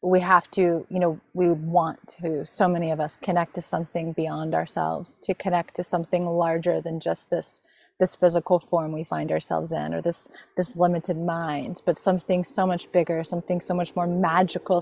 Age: 30-49